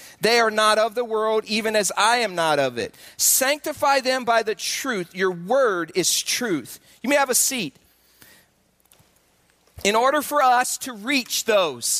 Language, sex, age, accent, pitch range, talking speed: English, male, 40-59, American, 210-280 Hz, 170 wpm